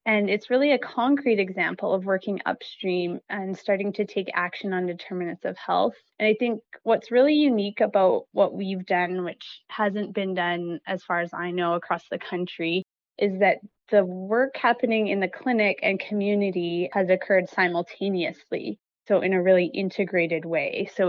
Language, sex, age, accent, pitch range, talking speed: English, female, 20-39, American, 180-205 Hz, 170 wpm